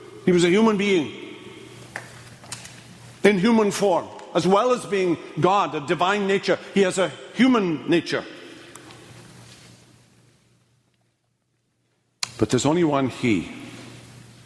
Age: 50-69